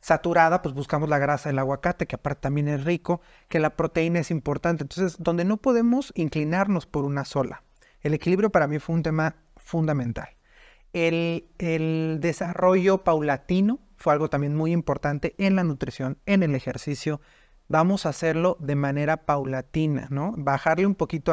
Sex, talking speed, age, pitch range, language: male, 165 wpm, 30-49, 145-175 Hz, Spanish